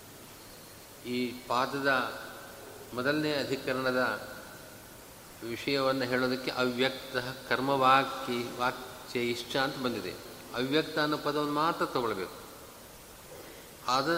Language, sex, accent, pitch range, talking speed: Kannada, male, native, 130-160 Hz, 75 wpm